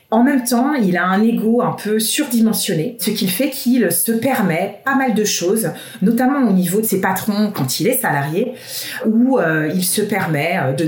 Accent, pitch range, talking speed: French, 180-235 Hz, 195 wpm